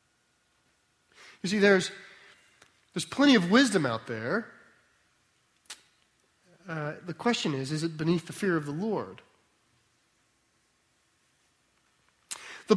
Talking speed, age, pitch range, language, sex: 105 wpm, 30-49, 120-160 Hz, English, male